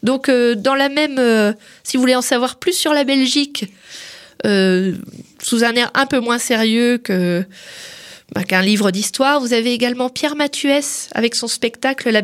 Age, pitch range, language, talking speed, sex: 20-39, 210-255 Hz, French, 175 wpm, female